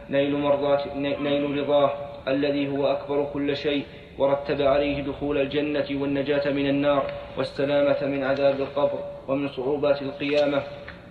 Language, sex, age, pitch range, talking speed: Arabic, male, 30-49, 140-145 Hz, 125 wpm